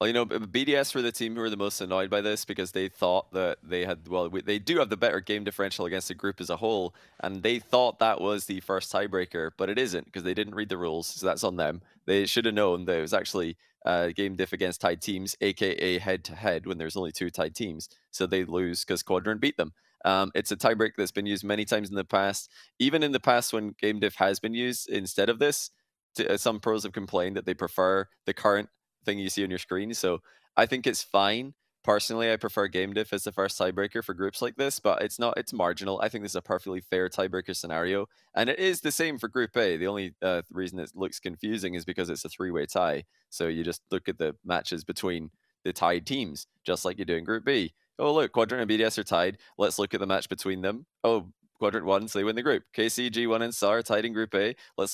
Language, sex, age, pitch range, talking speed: English, male, 20-39, 95-110 Hz, 250 wpm